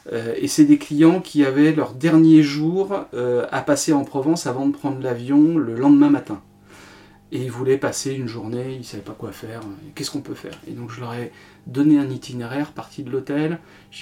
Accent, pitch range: French, 120-150 Hz